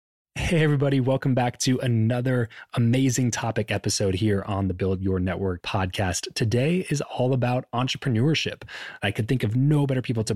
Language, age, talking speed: English, 20-39, 170 wpm